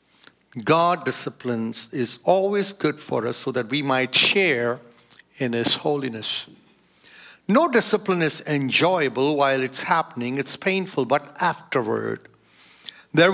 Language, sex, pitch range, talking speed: English, male, 140-185 Hz, 120 wpm